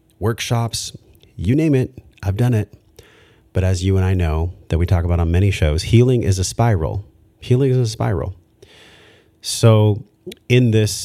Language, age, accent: English, 30-49, American